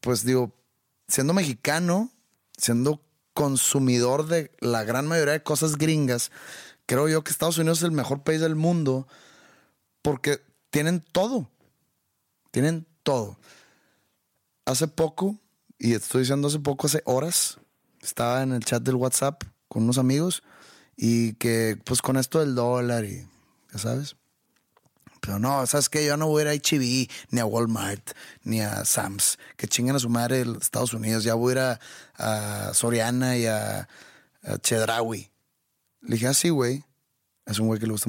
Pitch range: 115-145 Hz